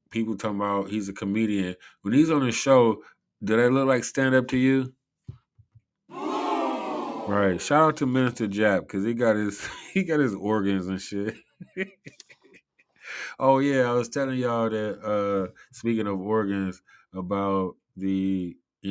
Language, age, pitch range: English, 20-39, 90-110 Hz